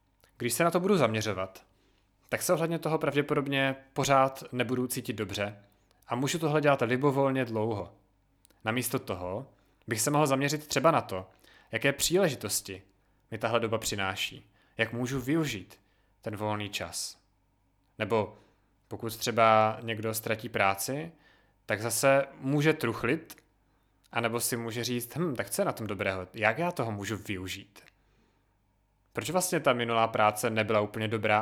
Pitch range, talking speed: 100-135 Hz, 145 wpm